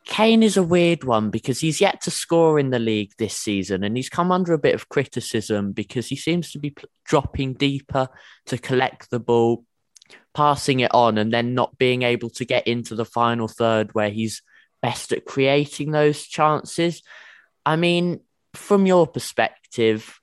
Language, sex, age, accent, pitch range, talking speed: English, male, 20-39, British, 105-140 Hz, 180 wpm